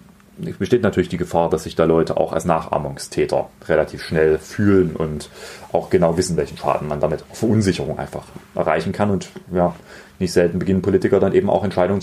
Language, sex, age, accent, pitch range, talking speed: German, male, 30-49, German, 80-100 Hz, 185 wpm